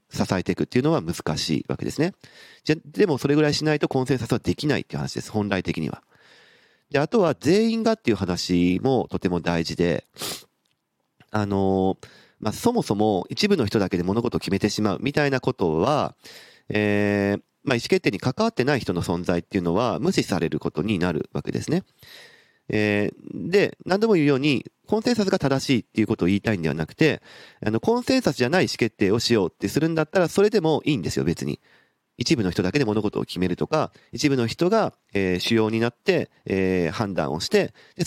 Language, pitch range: Japanese, 95-155 Hz